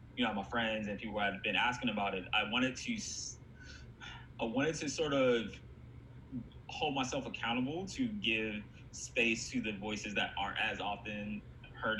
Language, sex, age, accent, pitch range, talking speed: English, male, 20-39, American, 100-125 Hz, 170 wpm